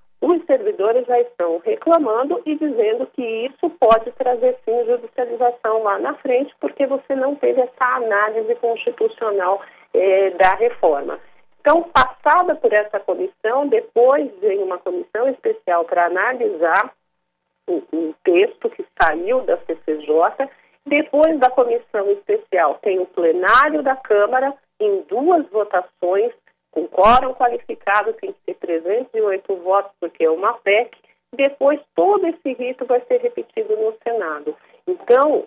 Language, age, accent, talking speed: Portuguese, 40-59, Brazilian, 135 wpm